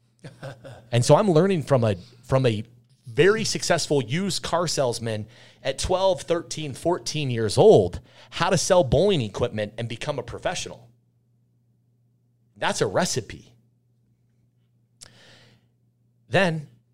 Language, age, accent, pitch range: English, 30-49, American, 105-125 Hz